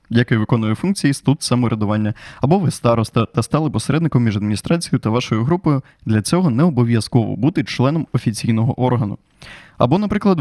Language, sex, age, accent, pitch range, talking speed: Ukrainian, male, 20-39, native, 110-145 Hz, 145 wpm